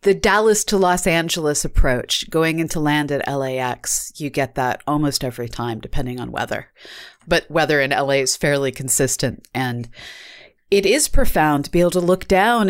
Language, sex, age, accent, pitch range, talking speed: English, female, 30-49, American, 135-180 Hz, 175 wpm